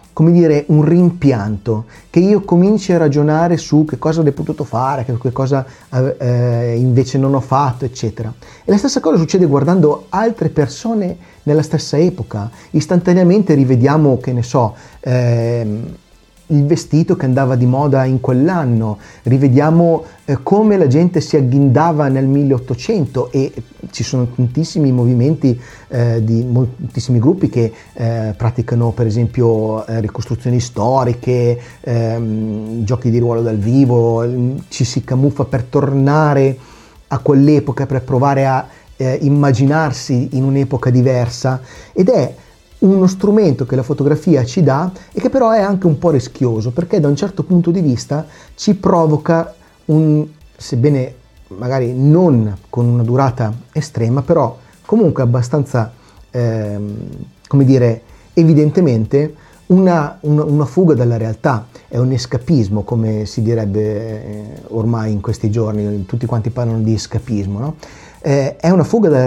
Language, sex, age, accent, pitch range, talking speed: Italian, male, 30-49, native, 120-155 Hz, 135 wpm